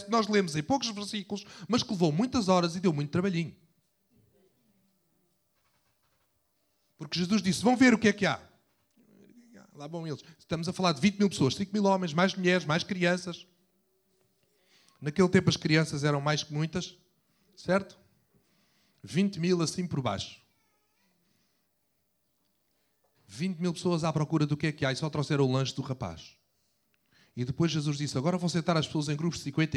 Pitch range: 135-180 Hz